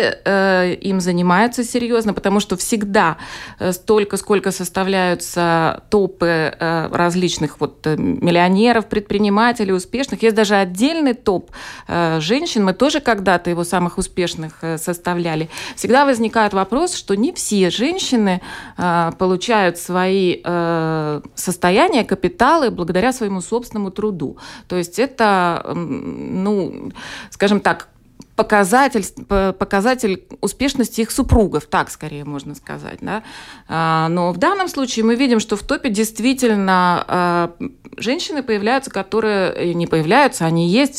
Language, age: Russian, 20-39